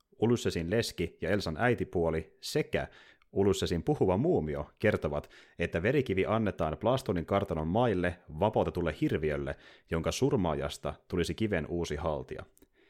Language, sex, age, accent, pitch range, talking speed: Finnish, male, 30-49, native, 80-110 Hz, 110 wpm